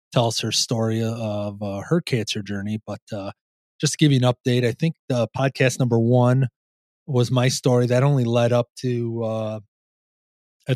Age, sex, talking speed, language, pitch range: 30-49, male, 185 wpm, English, 105-140 Hz